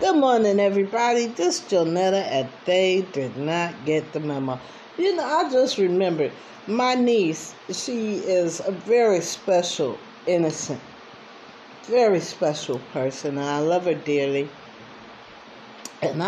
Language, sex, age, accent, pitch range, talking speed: English, female, 60-79, American, 155-200 Hz, 125 wpm